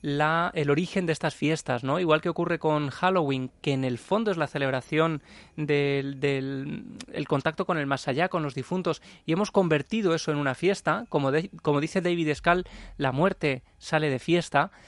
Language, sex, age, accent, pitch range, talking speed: Spanish, male, 20-39, Spanish, 140-175 Hz, 195 wpm